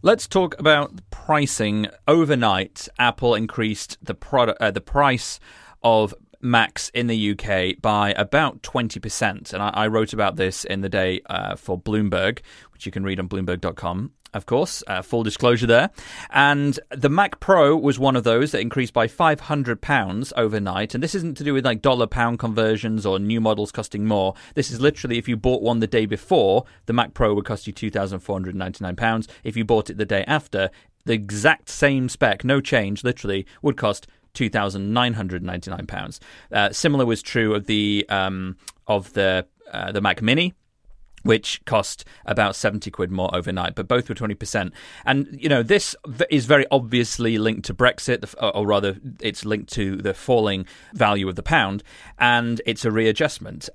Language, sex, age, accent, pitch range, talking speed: English, male, 30-49, British, 100-125 Hz, 170 wpm